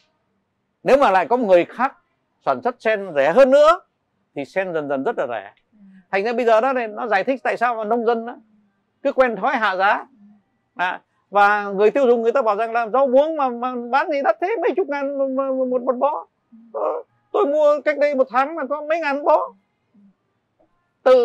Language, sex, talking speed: Vietnamese, male, 210 wpm